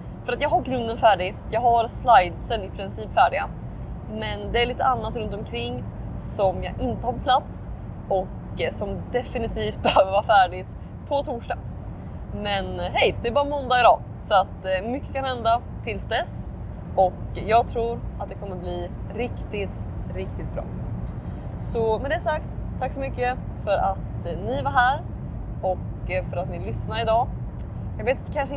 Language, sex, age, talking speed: Swedish, female, 20-39, 165 wpm